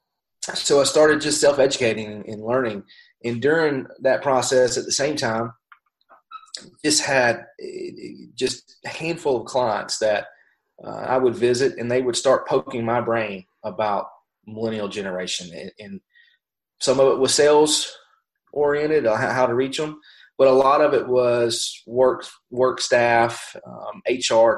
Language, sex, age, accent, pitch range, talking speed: English, male, 30-49, American, 110-135 Hz, 140 wpm